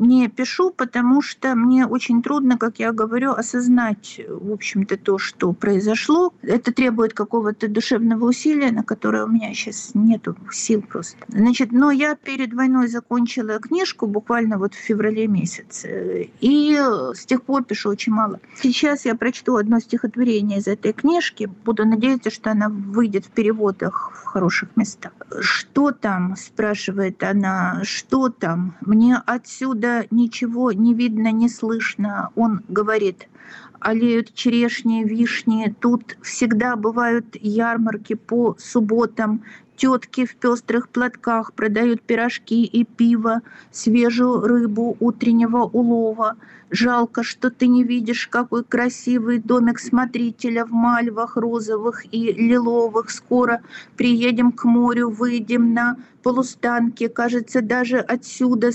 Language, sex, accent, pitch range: Russian, female, native, 220-245 Hz